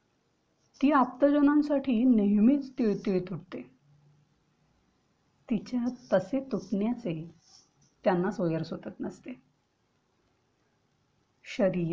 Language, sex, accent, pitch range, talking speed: Marathi, female, native, 175-235 Hz, 65 wpm